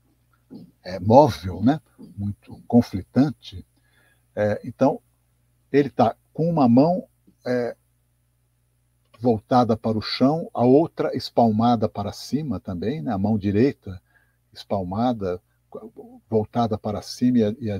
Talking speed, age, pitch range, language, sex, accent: 105 wpm, 60-79, 95-120 Hz, Portuguese, male, Brazilian